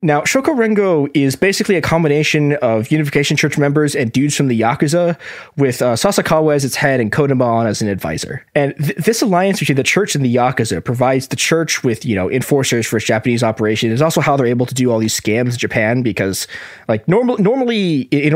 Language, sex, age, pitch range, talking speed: English, male, 20-39, 115-160 Hz, 210 wpm